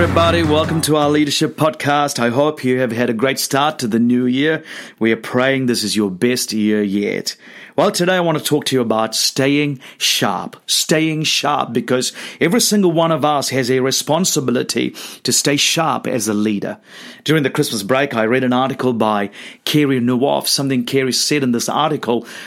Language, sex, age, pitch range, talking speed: English, male, 40-59, 125-160 Hz, 190 wpm